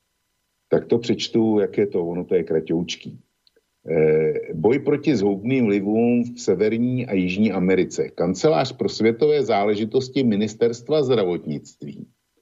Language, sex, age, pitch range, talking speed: Slovak, male, 50-69, 105-170 Hz, 120 wpm